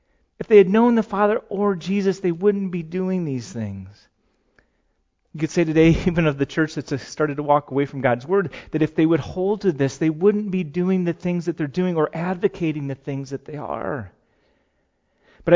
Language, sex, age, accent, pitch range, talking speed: English, male, 30-49, American, 125-175 Hz, 210 wpm